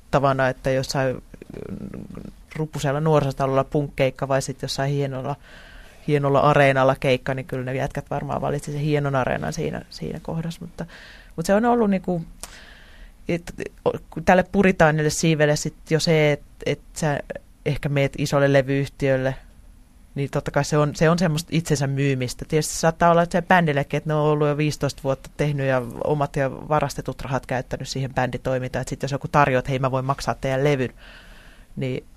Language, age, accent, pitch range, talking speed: Finnish, 30-49, native, 135-155 Hz, 165 wpm